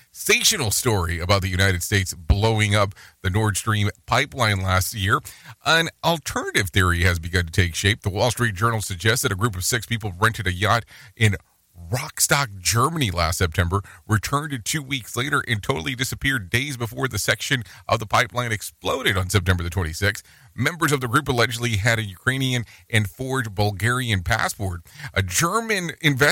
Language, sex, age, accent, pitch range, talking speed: English, male, 40-59, American, 100-125 Hz, 170 wpm